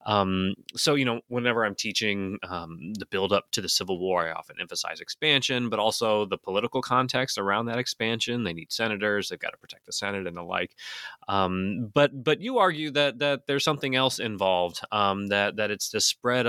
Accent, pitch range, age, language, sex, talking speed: American, 100-130 Hz, 30-49, English, male, 200 wpm